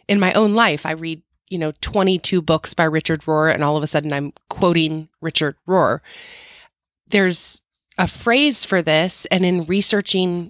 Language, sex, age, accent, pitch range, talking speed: English, female, 30-49, American, 160-195 Hz, 170 wpm